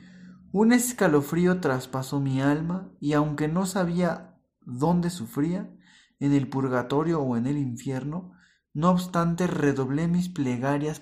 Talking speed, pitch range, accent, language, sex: 125 wpm, 135-175 Hz, Mexican, Spanish, male